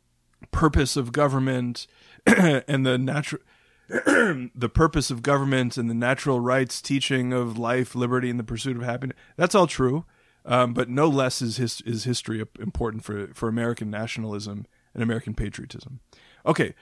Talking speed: 155 wpm